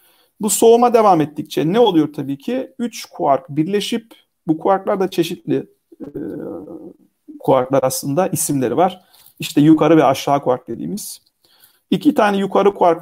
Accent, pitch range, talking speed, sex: native, 155-225 Hz, 140 wpm, male